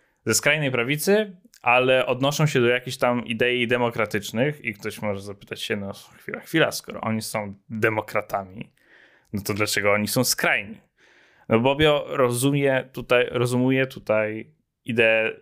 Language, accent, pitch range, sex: Polish, native, 110-135 Hz, male